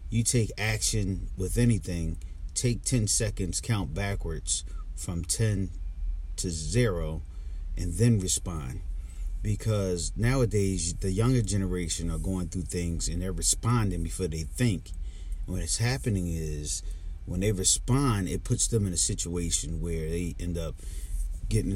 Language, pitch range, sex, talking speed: English, 80-95 Hz, male, 135 wpm